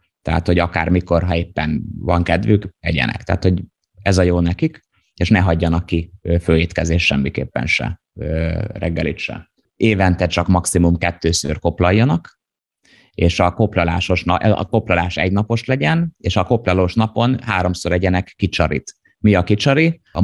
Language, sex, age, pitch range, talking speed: Hungarian, male, 30-49, 85-100 Hz, 135 wpm